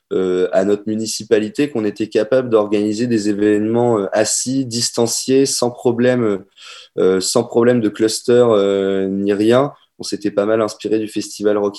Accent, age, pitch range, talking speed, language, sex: French, 20-39, 100-125 Hz, 160 wpm, French, male